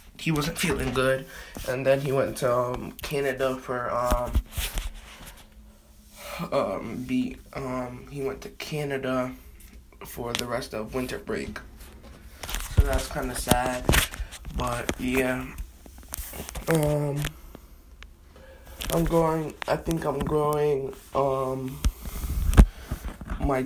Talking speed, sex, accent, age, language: 105 wpm, male, American, 20-39, English